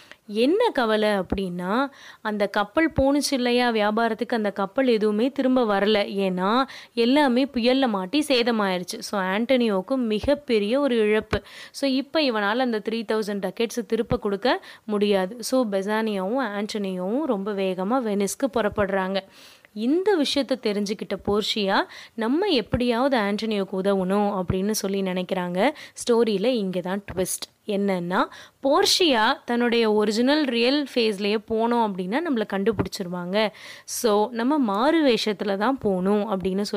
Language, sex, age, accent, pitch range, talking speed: Tamil, female, 20-39, native, 200-260 Hz, 115 wpm